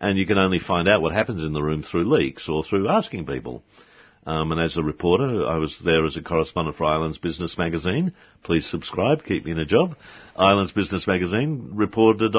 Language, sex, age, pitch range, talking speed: English, male, 60-79, 80-95 Hz, 210 wpm